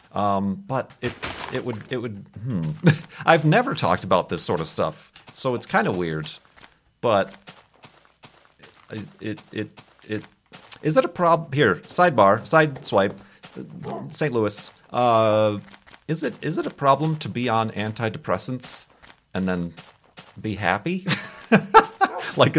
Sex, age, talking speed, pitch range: male, 40-59, 140 wpm, 100-150 Hz